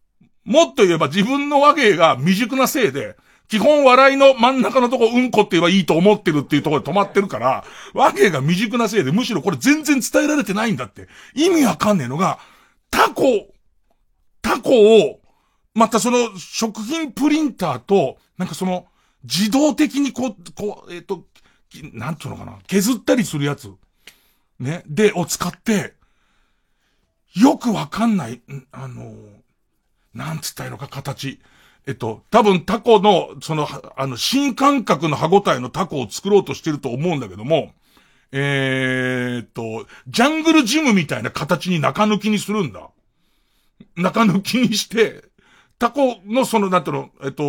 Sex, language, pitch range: male, Japanese, 140-230 Hz